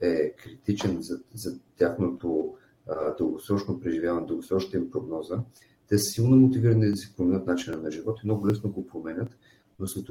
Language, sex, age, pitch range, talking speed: Bulgarian, male, 40-59, 90-110 Hz, 160 wpm